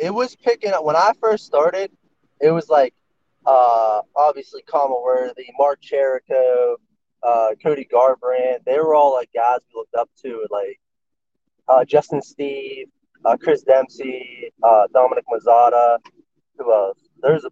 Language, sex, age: English, male, 20-39